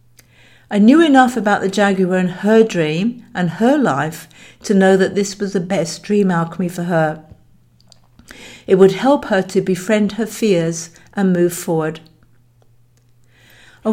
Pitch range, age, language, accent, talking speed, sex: 165-220 Hz, 60-79, English, British, 150 wpm, female